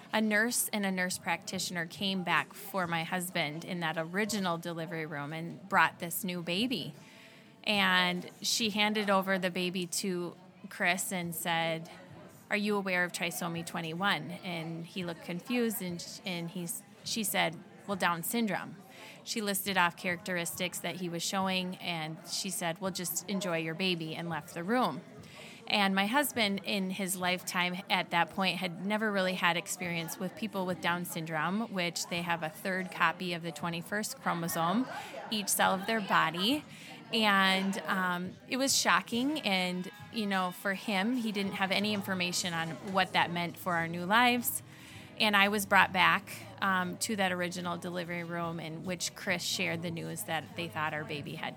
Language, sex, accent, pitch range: English, female, American, 170-200 Hz